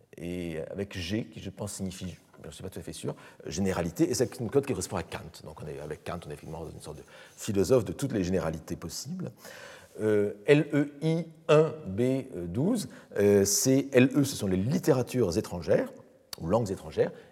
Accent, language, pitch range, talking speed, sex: French, French, 85-125 Hz, 210 wpm, male